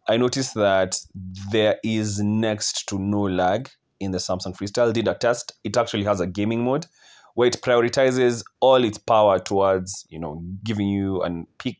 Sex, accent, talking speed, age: male, South African, 180 wpm, 20-39